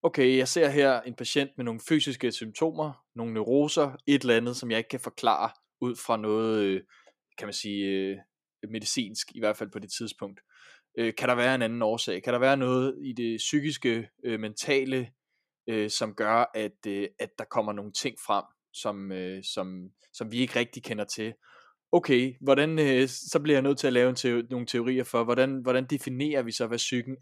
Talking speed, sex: 175 wpm, male